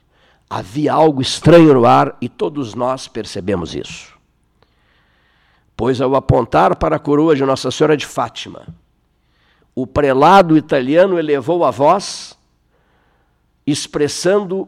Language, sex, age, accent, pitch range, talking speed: Portuguese, male, 60-79, Brazilian, 110-155 Hz, 115 wpm